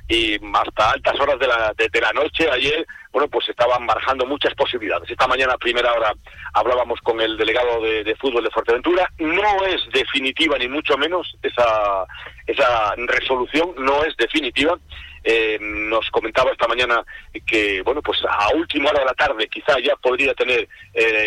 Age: 40-59